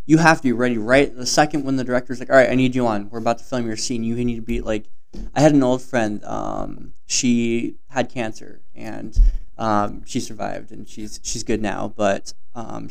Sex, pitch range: male, 115-140 Hz